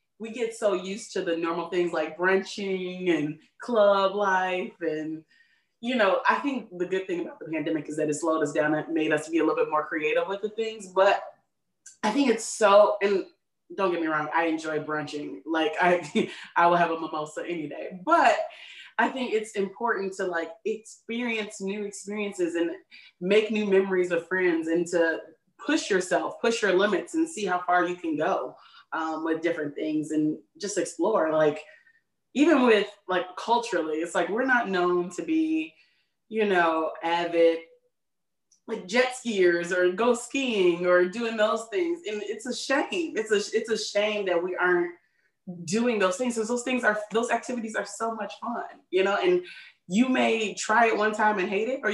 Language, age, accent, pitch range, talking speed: English, 20-39, American, 170-230 Hz, 190 wpm